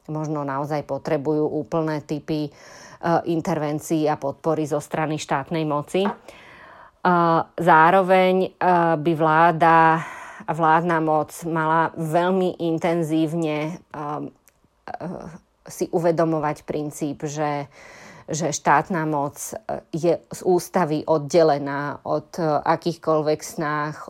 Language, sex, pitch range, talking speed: Slovak, female, 150-165 Hz, 100 wpm